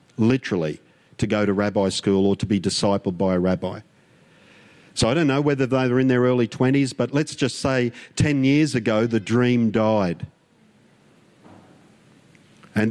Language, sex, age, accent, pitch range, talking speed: English, male, 50-69, Australian, 100-130 Hz, 165 wpm